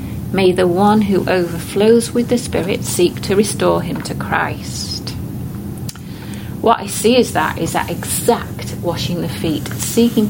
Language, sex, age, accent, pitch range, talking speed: English, female, 40-59, British, 175-230 Hz, 150 wpm